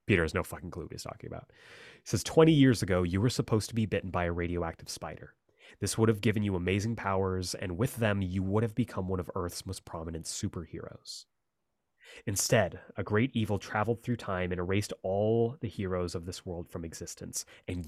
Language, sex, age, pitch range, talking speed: English, male, 30-49, 90-115 Hz, 210 wpm